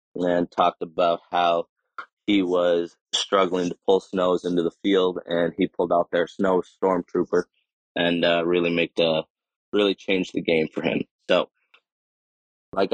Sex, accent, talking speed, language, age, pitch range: male, American, 160 wpm, English, 20-39, 85-100 Hz